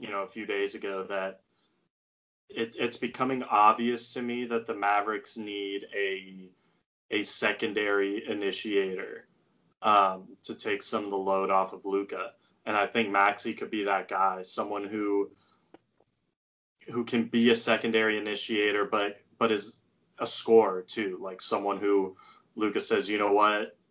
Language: English